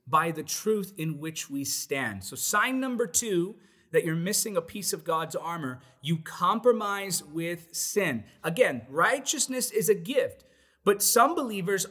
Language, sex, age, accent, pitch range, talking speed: English, male, 30-49, American, 155-220 Hz, 155 wpm